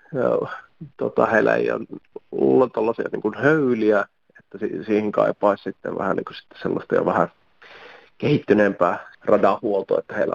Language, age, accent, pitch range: Finnish, 30-49, native, 105-125 Hz